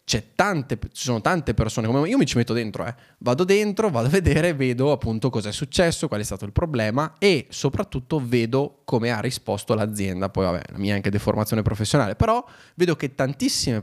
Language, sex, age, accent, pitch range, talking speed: Italian, male, 20-39, native, 105-140 Hz, 205 wpm